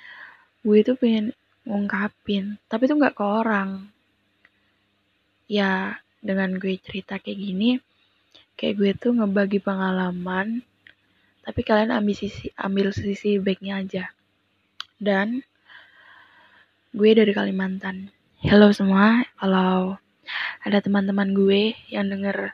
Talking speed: 105 wpm